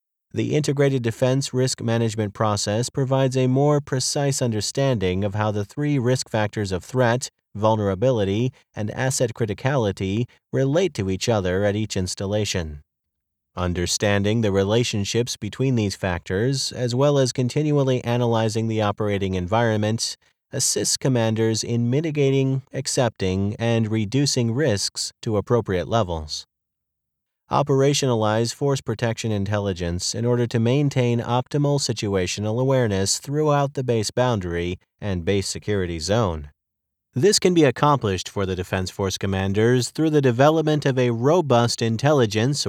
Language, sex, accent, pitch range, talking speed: English, male, American, 100-130 Hz, 125 wpm